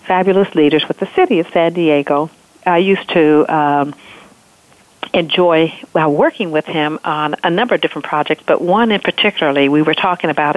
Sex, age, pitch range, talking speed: female, 50-69, 155-195 Hz, 170 wpm